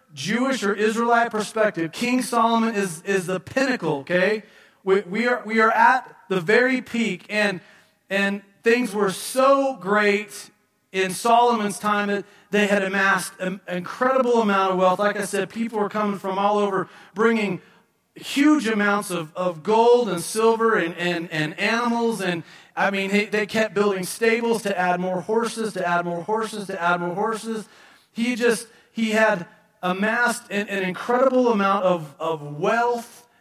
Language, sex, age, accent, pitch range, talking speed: English, male, 40-59, American, 175-225 Hz, 165 wpm